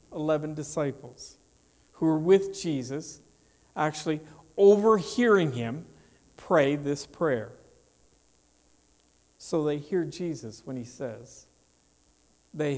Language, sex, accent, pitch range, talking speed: English, male, American, 120-180 Hz, 95 wpm